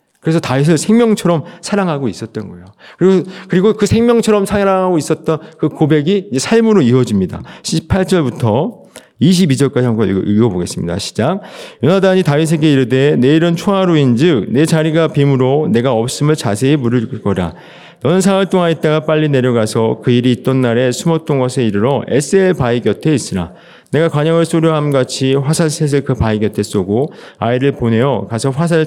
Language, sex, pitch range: Korean, male, 115-160 Hz